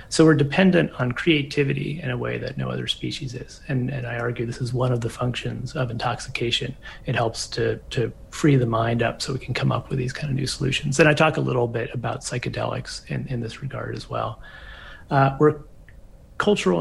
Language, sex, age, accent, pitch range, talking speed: English, male, 30-49, American, 115-140 Hz, 220 wpm